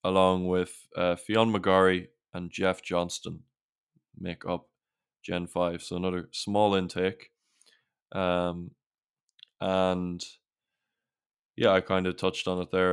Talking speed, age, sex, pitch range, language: 120 wpm, 20-39, male, 90-95 Hz, English